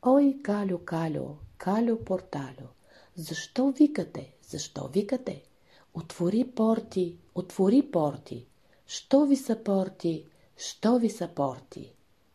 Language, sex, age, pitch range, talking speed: Bulgarian, female, 40-59, 145-200 Hz, 100 wpm